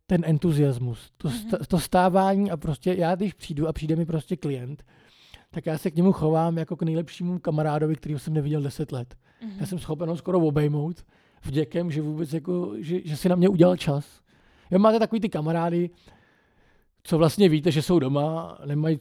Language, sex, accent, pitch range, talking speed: Czech, male, native, 145-175 Hz, 180 wpm